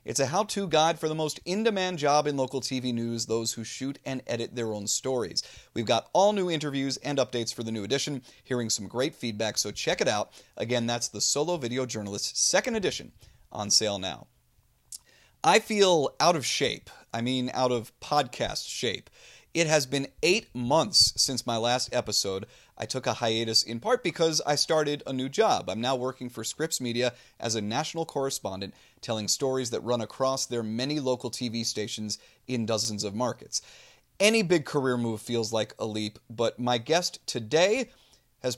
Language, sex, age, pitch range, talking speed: English, male, 30-49, 115-150 Hz, 190 wpm